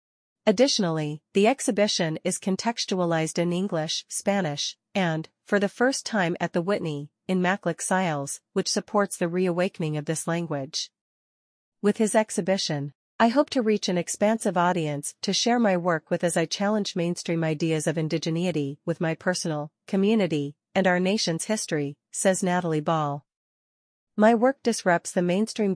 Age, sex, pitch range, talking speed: 40-59, female, 160-200 Hz, 150 wpm